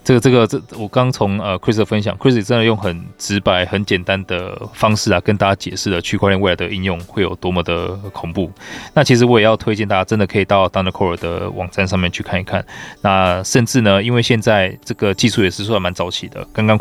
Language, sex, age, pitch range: Chinese, male, 20-39, 90-110 Hz